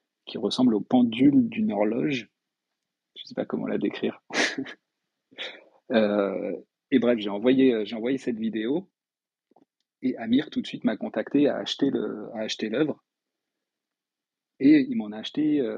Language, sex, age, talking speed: French, male, 40-59, 120 wpm